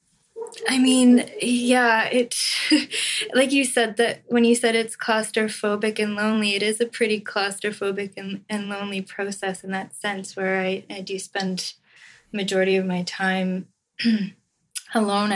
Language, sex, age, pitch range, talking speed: English, female, 20-39, 180-210 Hz, 145 wpm